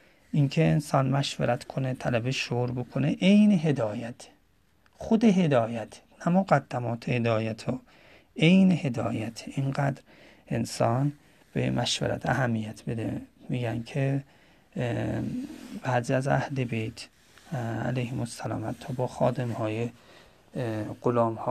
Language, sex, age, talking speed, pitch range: Persian, male, 40-59, 95 wpm, 110-135 Hz